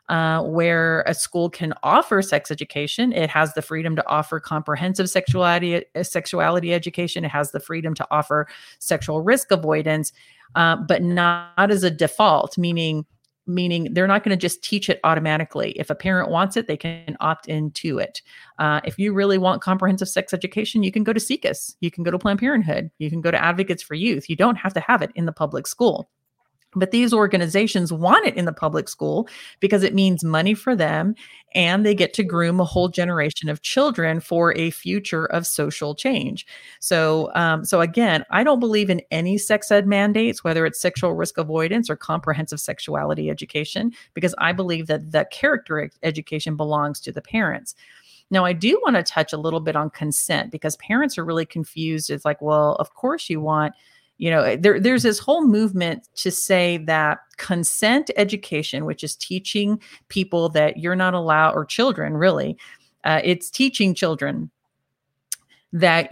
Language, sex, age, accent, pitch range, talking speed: English, female, 30-49, American, 155-195 Hz, 185 wpm